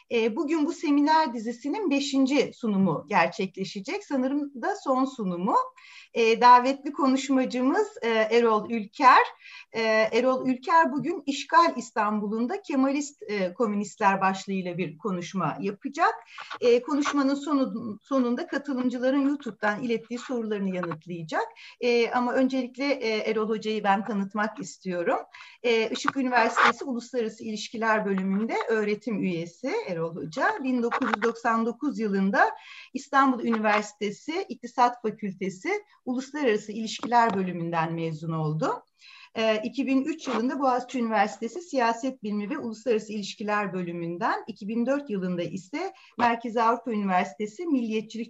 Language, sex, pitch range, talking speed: Turkish, female, 205-265 Hz, 95 wpm